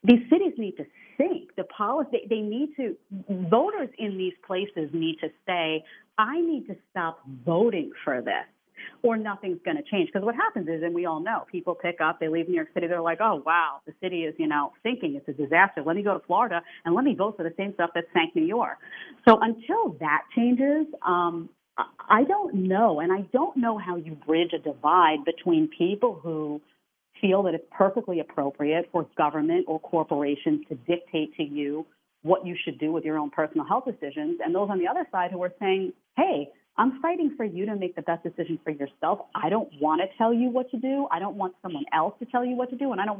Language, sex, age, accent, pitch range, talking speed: English, female, 40-59, American, 165-225 Hz, 225 wpm